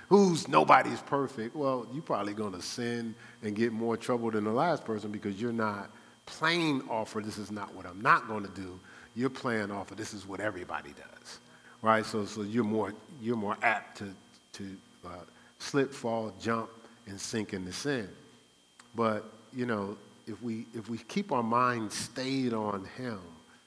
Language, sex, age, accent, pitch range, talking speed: English, male, 50-69, American, 95-115 Hz, 185 wpm